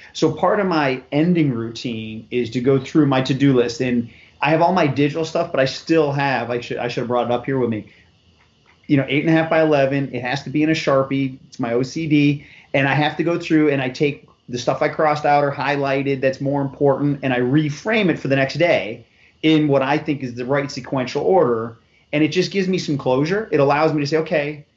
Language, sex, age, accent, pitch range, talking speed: English, male, 30-49, American, 130-155 Hz, 245 wpm